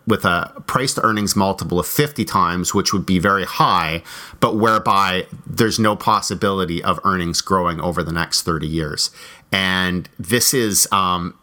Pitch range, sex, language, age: 85-100 Hz, male, English, 30-49